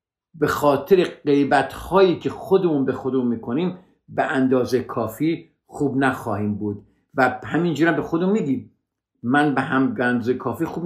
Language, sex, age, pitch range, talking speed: Persian, male, 50-69, 110-165 Hz, 140 wpm